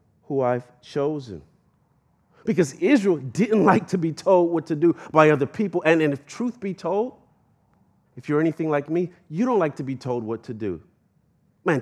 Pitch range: 120-170 Hz